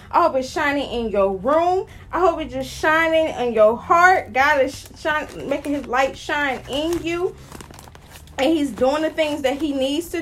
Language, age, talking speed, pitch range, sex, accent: English, 10-29, 195 wpm, 245-320 Hz, female, American